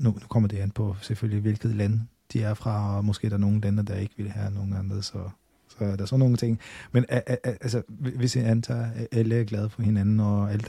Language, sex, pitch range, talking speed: Danish, male, 100-115 Hz, 240 wpm